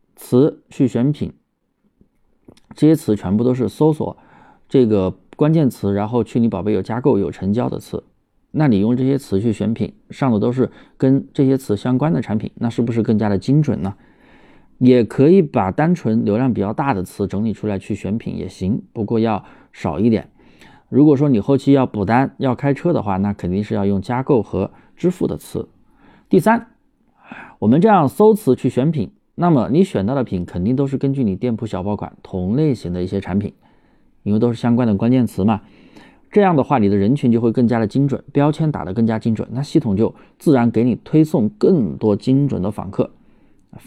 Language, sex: Chinese, male